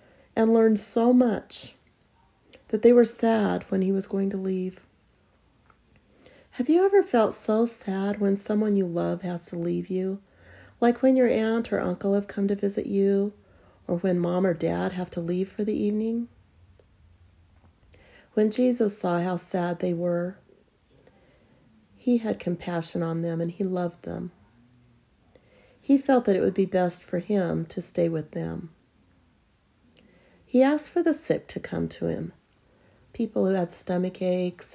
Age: 40-59